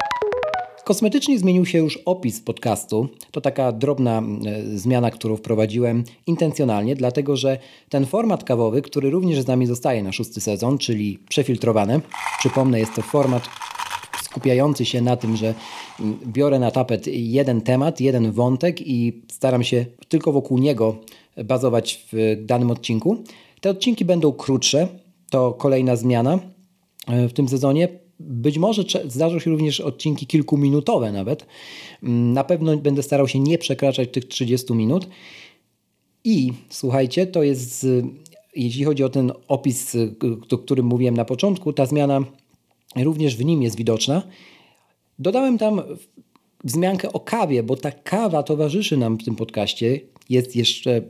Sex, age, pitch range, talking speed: male, 40-59, 115-155 Hz, 140 wpm